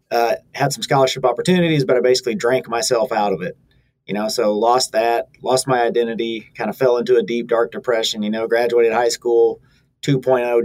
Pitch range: 115-135 Hz